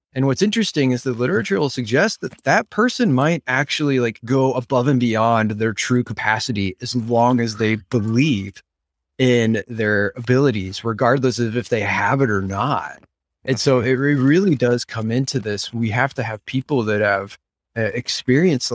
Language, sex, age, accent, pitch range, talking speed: English, male, 30-49, American, 110-130 Hz, 175 wpm